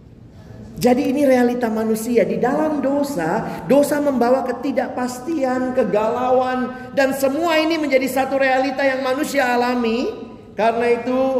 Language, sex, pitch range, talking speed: Indonesian, male, 170-245 Hz, 115 wpm